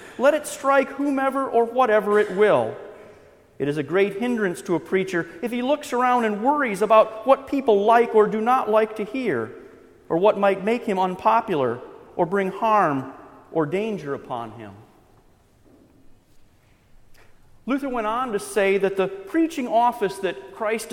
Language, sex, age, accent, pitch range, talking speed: English, male, 40-59, American, 195-240 Hz, 160 wpm